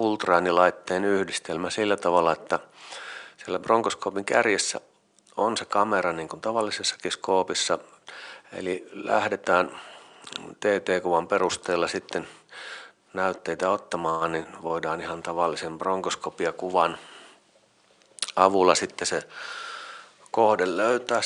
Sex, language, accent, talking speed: male, English, Finnish, 90 wpm